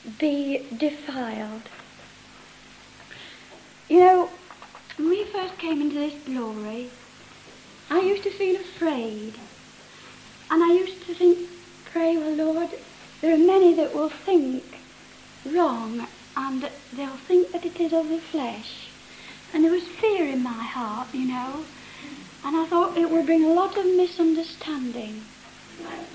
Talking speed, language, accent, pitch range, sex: 135 wpm, English, British, 255-345 Hz, female